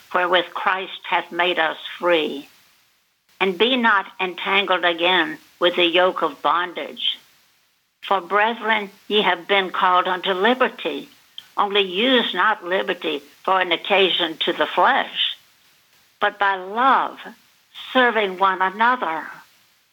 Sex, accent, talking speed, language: female, American, 120 wpm, English